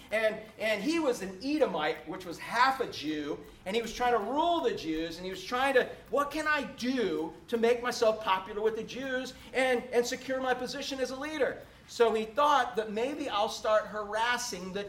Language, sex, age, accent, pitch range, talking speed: English, male, 40-59, American, 190-250 Hz, 210 wpm